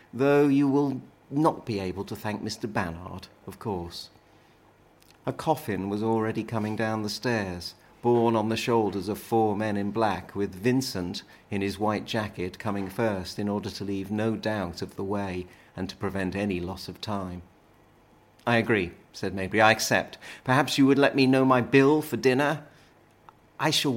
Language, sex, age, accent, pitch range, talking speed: English, male, 40-59, British, 95-125 Hz, 180 wpm